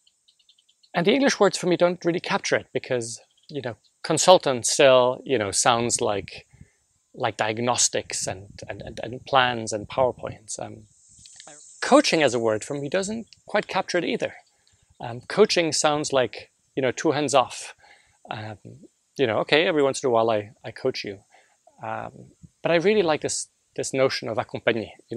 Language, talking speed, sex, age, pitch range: English, 175 wpm, male, 30-49, 115-155 Hz